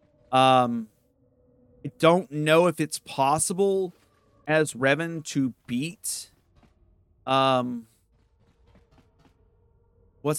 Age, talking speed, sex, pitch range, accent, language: 30-49, 75 wpm, male, 110-145 Hz, American, English